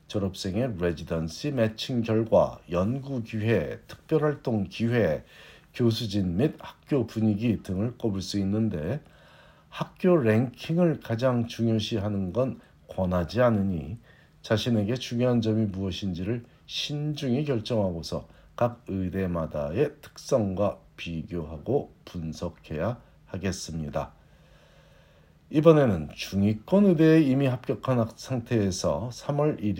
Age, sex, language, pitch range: 50-69, male, Korean, 95-125 Hz